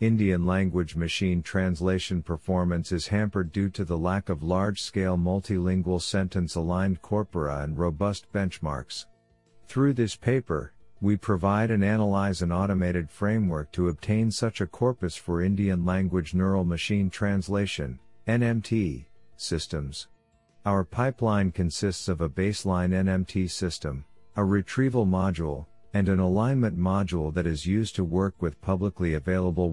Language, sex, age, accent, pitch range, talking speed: English, male, 50-69, American, 85-100 Hz, 130 wpm